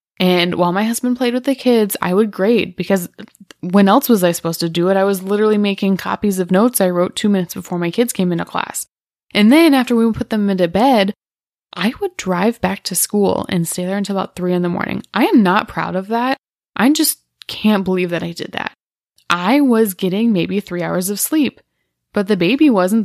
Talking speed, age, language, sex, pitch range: 225 wpm, 20-39, English, female, 180-225 Hz